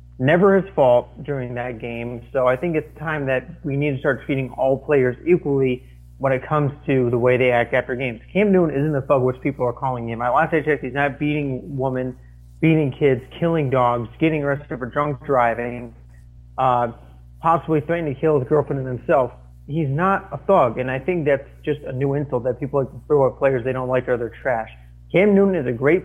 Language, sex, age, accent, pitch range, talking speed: English, male, 30-49, American, 125-150 Hz, 220 wpm